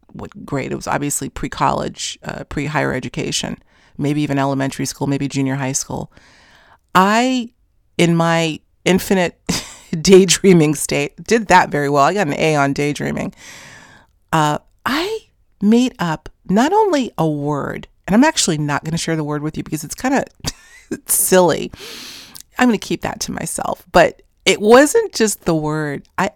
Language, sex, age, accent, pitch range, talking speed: English, female, 40-59, American, 145-210 Hz, 165 wpm